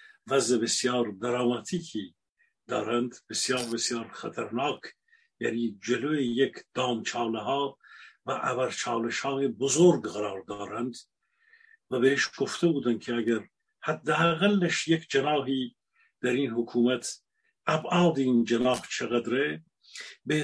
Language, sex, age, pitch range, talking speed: Persian, male, 50-69, 120-170 Hz, 105 wpm